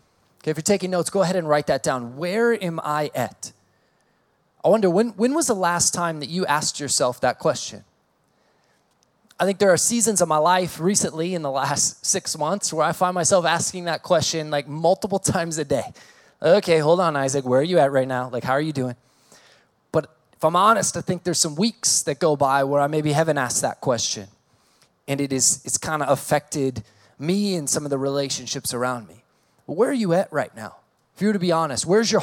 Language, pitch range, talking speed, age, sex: English, 150-190 Hz, 215 wpm, 20-39, male